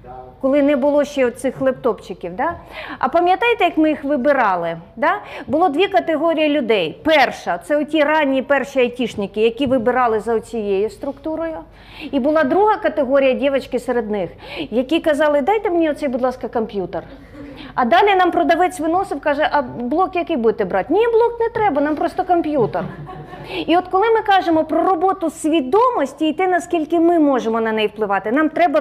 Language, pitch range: Ukrainian, 260-355 Hz